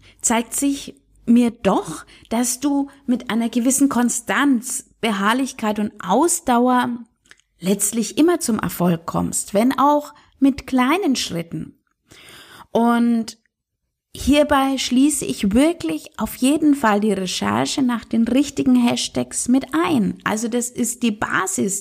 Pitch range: 210-275 Hz